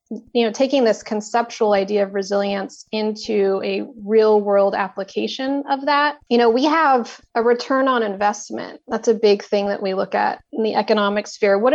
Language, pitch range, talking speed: English, 200-235 Hz, 185 wpm